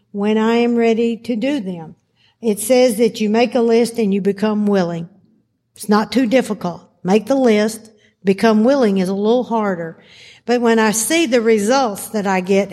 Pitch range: 195-240 Hz